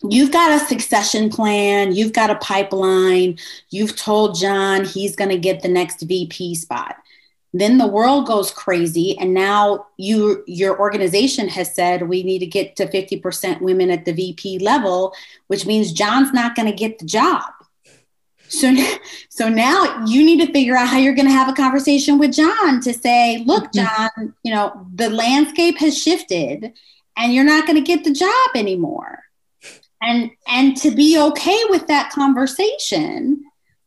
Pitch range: 195-275 Hz